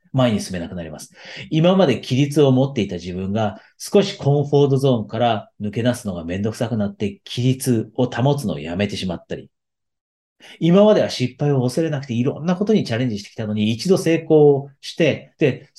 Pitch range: 105-140 Hz